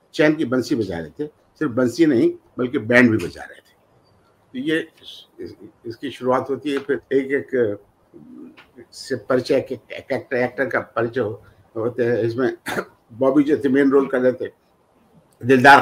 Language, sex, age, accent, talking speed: Hindi, male, 50-69, native, 150 wpm